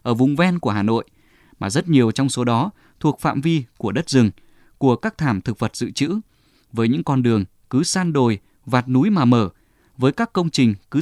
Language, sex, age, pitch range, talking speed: Vietnamese, male, 20-39, 115-150 Hz, 225 wpm